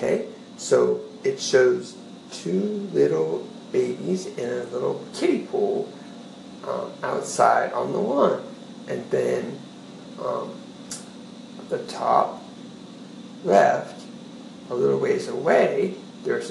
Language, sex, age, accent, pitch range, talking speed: English, male, 60-79, American, 235-390 Hz, 100 wpm